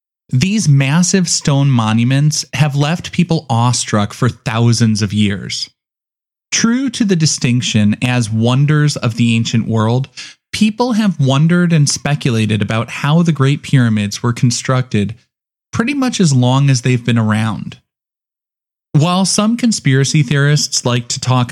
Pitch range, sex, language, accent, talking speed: 120-155 Hz, male, English, American, 135 wpm